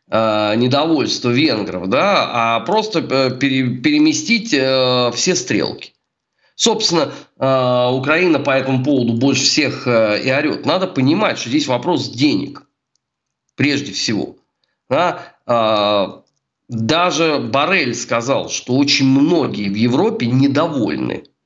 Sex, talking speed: male, 110 wpm